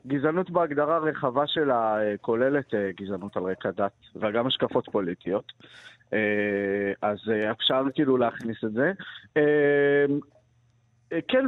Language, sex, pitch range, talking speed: Hebrew, male, 120-170 Hz, 100 wpm